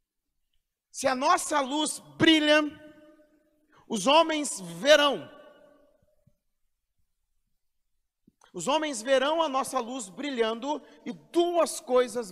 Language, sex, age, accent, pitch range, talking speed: Portuguese, male, 50-69, Brazilian, 155-255 Hz, 90 wpm